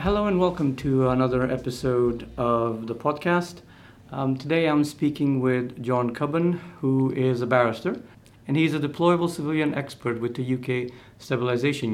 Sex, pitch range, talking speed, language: male, 120-150 Hz, 150 wpm, English